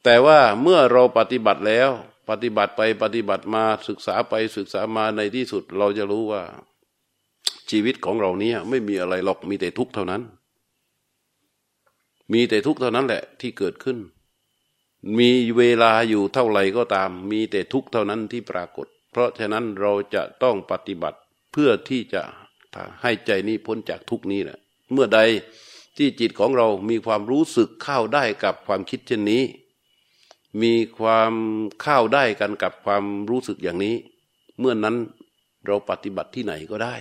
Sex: male